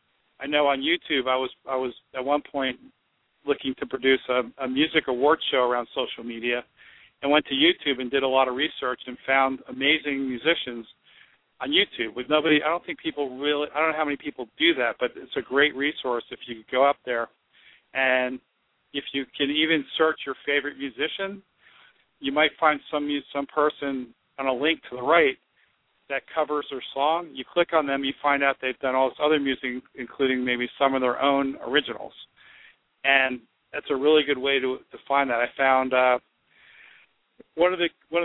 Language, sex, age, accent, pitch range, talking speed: English, male, 50-69, American, 130-155 Hz, 195 wpm